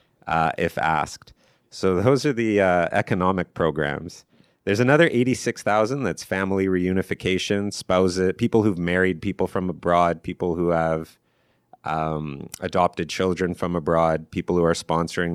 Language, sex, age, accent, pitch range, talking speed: English, male, 30-49, American, 80-100 Hz, 140 wpm